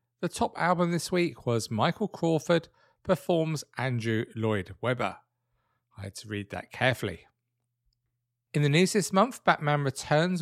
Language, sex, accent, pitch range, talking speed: English, male, British, 120-170 Hz, 145 wpm